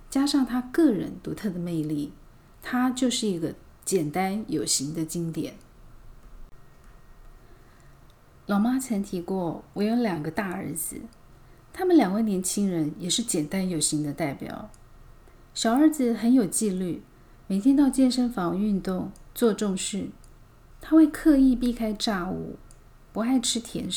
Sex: female